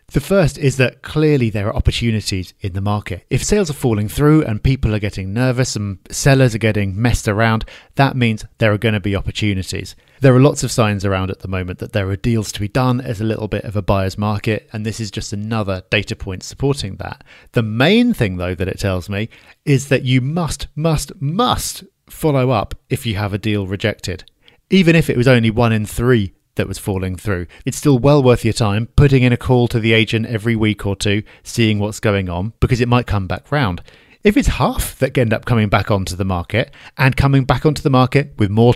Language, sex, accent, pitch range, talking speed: English, male, British, 105-130 Hz, 230 wpm